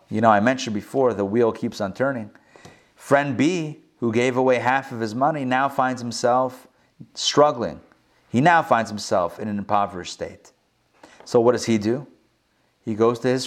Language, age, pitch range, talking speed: English, 30-49, 125-200 Hz, 180 wpm